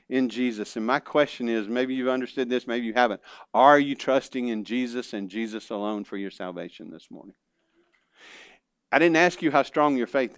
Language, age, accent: English, 50-69, American